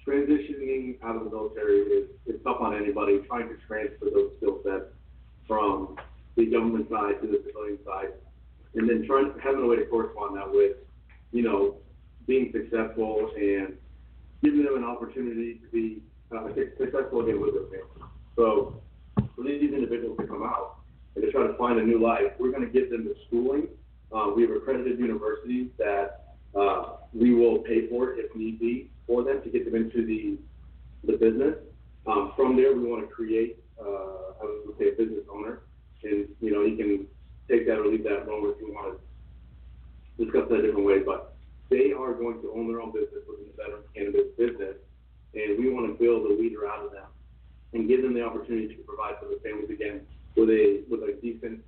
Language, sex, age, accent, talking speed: English, male, 40-59, American, 200 wpm